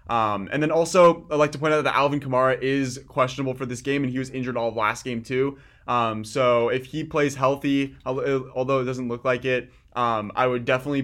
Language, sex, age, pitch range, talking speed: English, male, 20-39, 115-135 Hz, 230 wpm